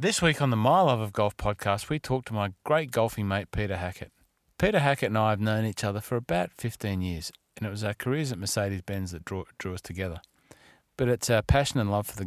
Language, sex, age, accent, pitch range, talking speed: English, male, 30-49, Australian, 100-120 Hz, 245 wpm